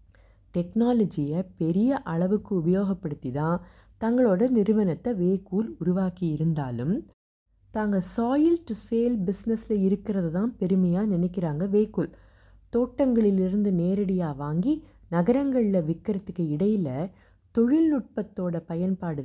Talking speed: 85 wpm